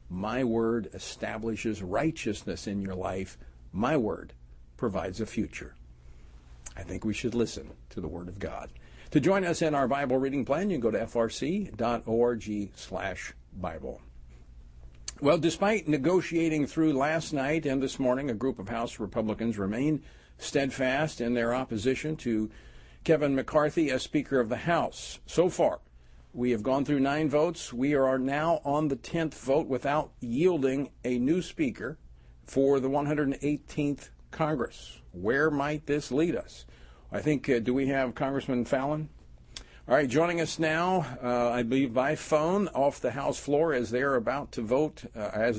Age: 50-69